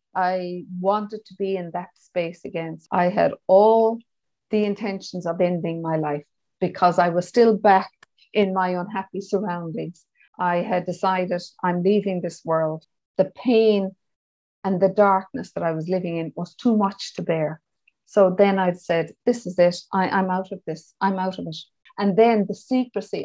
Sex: female